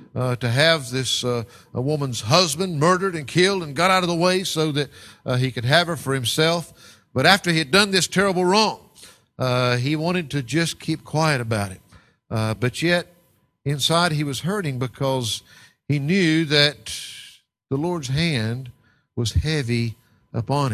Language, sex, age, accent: English, male, 50-69, American